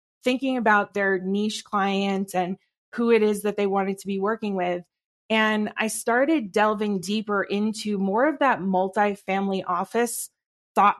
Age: 20-39